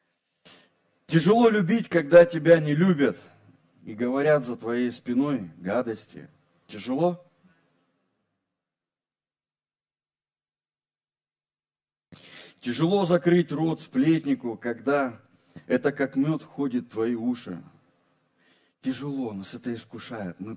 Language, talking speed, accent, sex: Russian, 90 wpm, native, male